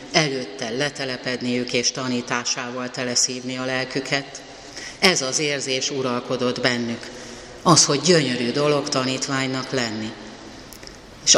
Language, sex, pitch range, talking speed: Hungarian, female, 125-140 Hz, 105 wpm